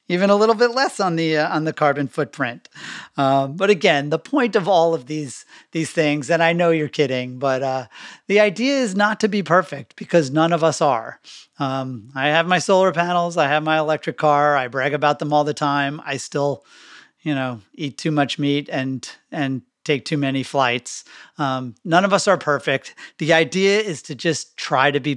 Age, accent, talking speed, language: 40-59, American, 210 wpm, English